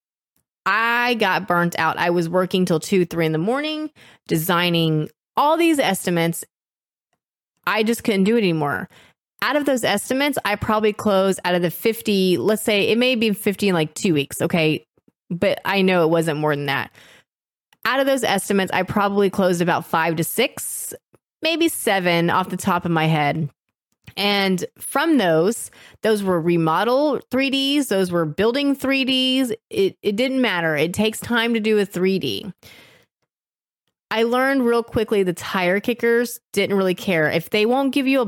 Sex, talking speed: female, 170 wpm